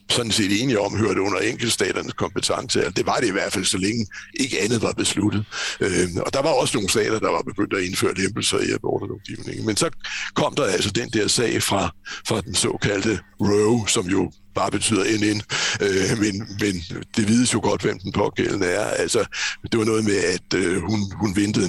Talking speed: 195 wpm